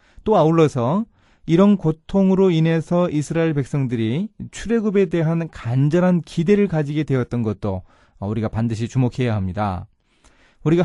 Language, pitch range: Korean, 115-165 Hz